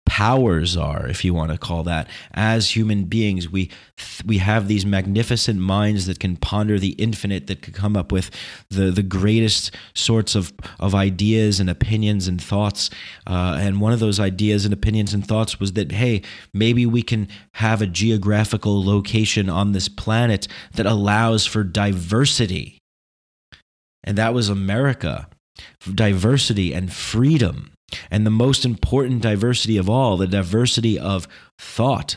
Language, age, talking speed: English, 30-49, 155 wpm